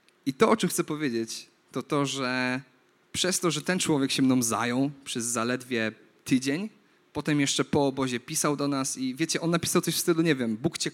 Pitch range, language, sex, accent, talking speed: 135-170 Hz, Polish, male, native, 210 wpm